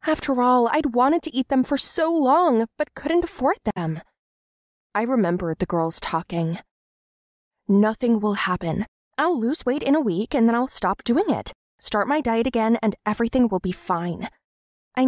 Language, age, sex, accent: English, 20-39, female, American